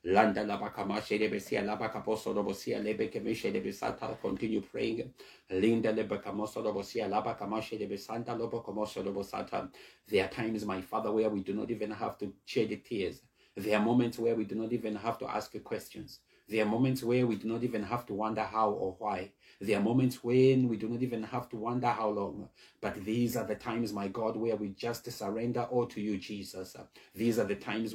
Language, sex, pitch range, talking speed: English, male, 105-130 Hz, 200 wpm